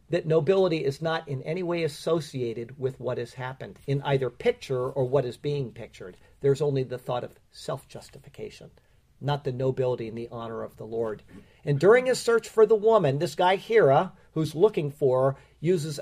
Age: 50-69